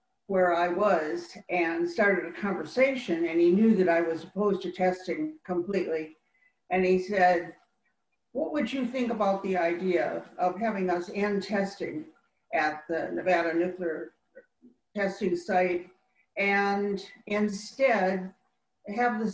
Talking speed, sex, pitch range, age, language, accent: 130 wpm, female, 175-205 Hz, 60-79, English, American